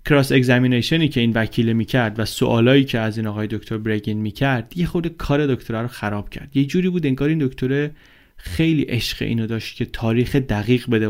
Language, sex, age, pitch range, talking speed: Persian, male, 20-39, 110-135 Hz, 205 wpm